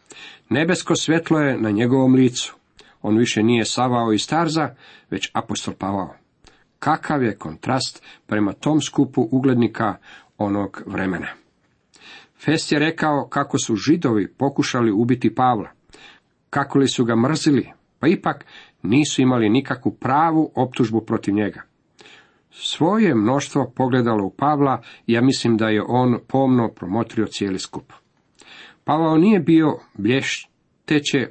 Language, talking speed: Croatian, 125 wpm